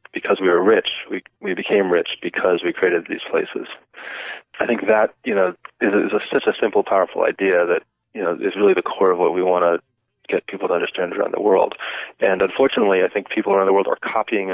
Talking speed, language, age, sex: 230 wpm, English, 20-39, male